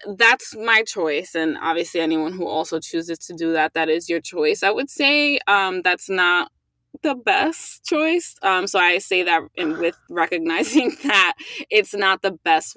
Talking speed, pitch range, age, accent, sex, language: 175 wpm, 165-250 Hz, 20-39, American, female, English